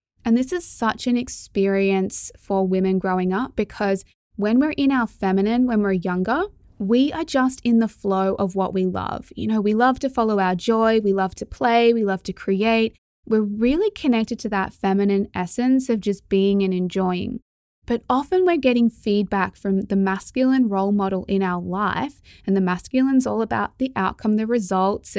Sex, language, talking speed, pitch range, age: female, English, 190 wpm, 190-240 Hz, 20-39